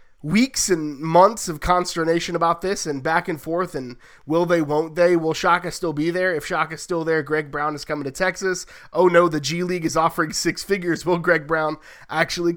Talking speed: 210 wpm